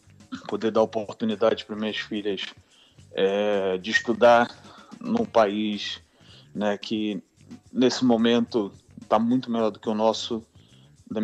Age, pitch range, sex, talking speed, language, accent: 20-39, 105-120 Hz, male, 125 wpm, Portuguese, Brazilian